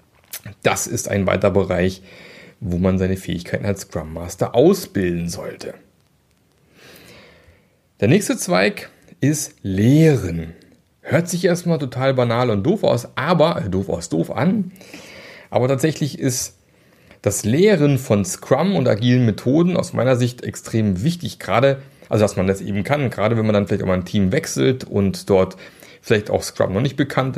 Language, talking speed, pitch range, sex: German, 160 wpm, 95-130 Hz, male